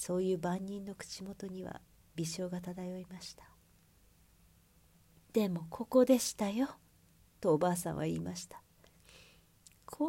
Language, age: Japanese, 40-59